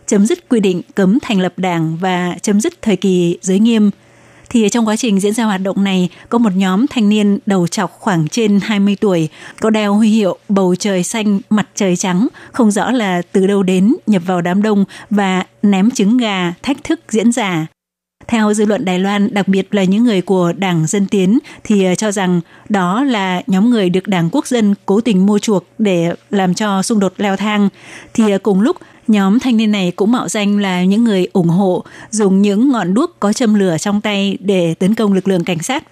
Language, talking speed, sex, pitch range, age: Vietnamese, 215 wpm, female, 190-220 Hz, 20-39